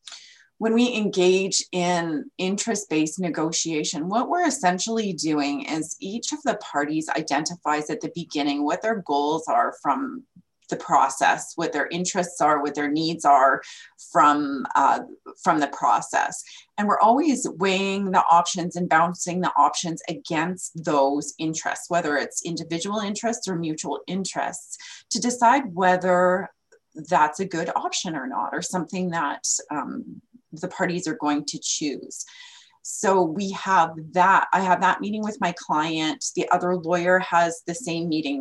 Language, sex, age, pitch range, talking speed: English, female, 30-49, 165-220 Hz, 150 wpm